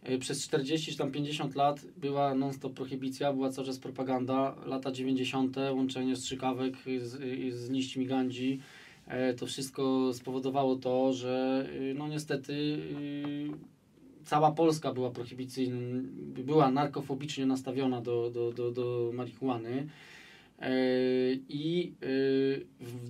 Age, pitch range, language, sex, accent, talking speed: 20-39, 130-150 Hz, Polish, male, native, 105 wpm